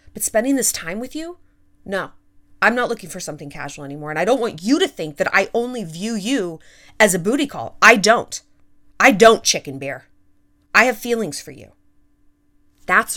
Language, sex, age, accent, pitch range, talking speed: English, female, 30-49, American, 145-235 Hz, 190 wpm